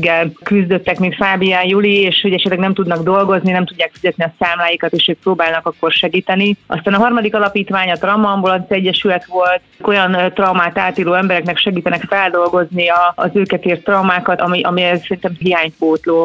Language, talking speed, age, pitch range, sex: Hungarian, 165 wpm, 30-49, 175-195 Hz, female